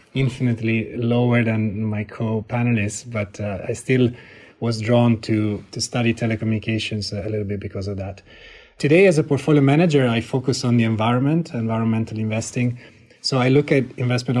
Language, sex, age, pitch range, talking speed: English, male, 30-49, 105-125 Hz, 160 wpm